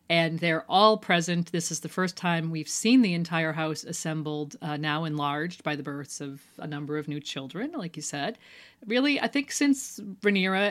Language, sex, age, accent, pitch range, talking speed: English, female, 40-59, American, 150-200 Hz, 195 wpm